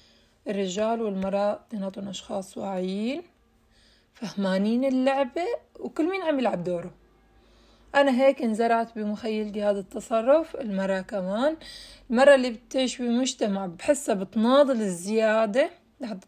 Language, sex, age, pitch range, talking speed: Arabic, female, 20-39, 195-250 Hz, 105 wpm